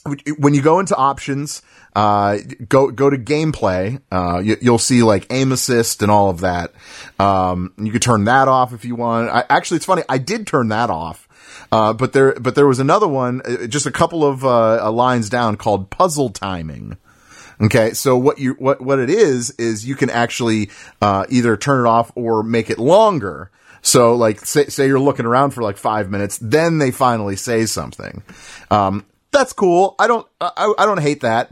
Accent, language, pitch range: American, English, 105-140 Hz